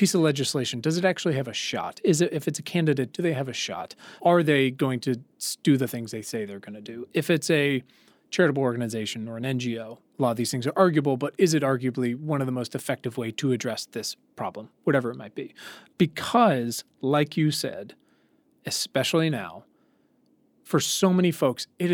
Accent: American